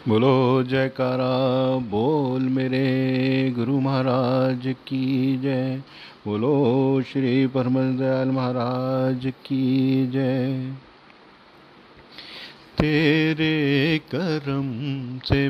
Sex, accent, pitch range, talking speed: male, native, 135-185 Hz, 65 wpm